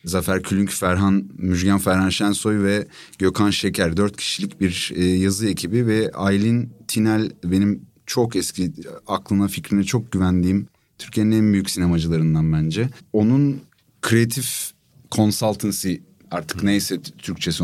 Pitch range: 95-115 Hz